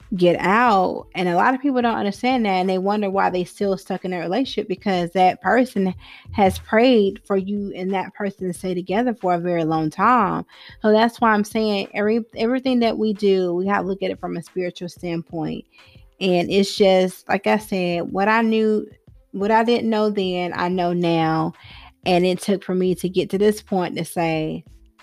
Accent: American